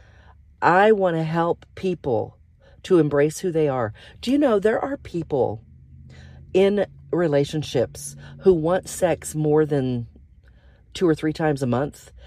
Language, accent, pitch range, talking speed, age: English, American, 125-185 Hz, 140 wpm, 40-59